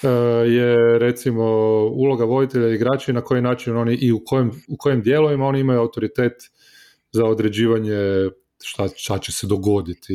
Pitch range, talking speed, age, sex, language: 105-135 Hz, 155 wpm, 30-49, male, Croatian